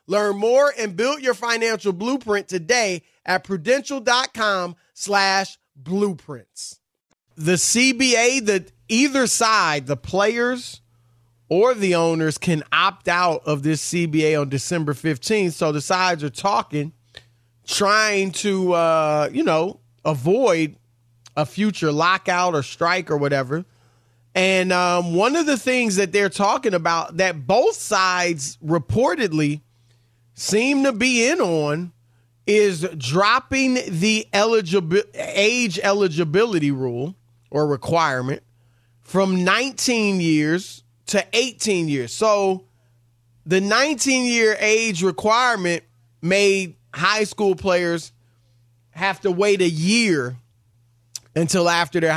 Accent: American